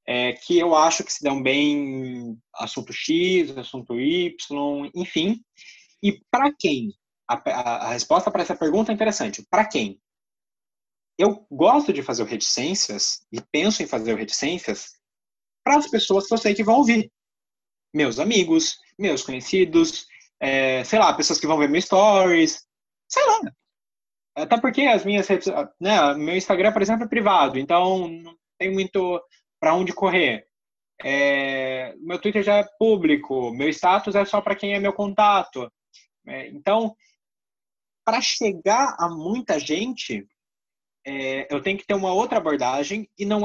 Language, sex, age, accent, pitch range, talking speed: Portuguese, male, 20-39, Brazilian, 155-215 Hz, 150 wpm